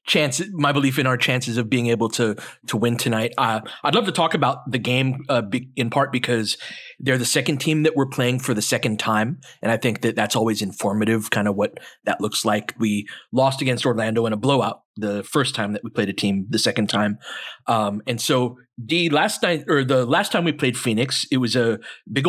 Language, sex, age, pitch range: English, male, 30-49, 115-140 Hz